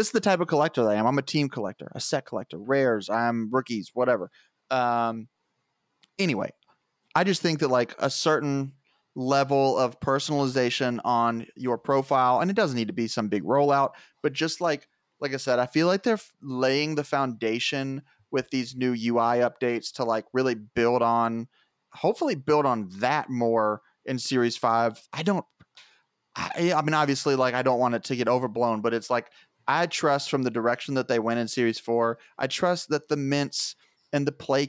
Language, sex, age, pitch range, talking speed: English, male, 30-49, 120-140 Hz, 190 wpm